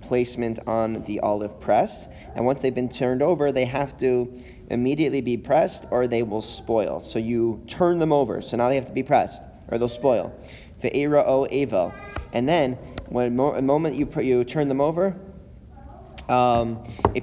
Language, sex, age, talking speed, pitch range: English, male, 30-49, 180 wpm, 110-130 Hz